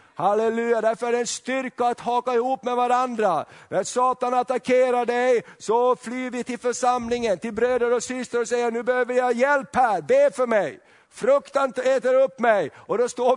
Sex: male